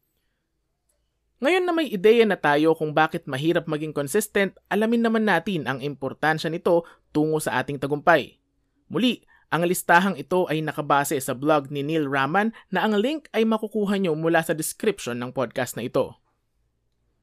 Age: 20-39